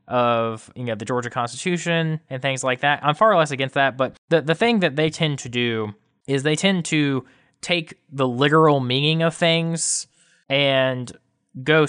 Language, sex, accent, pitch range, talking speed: English, male, American, 130-160 Hz, 180 wpm